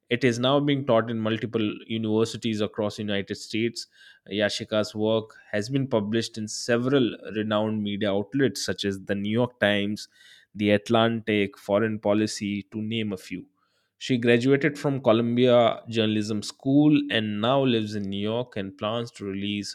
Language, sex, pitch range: Hindi, male, 100-120 Hz